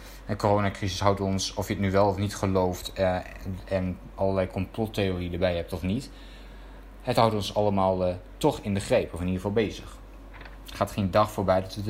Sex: male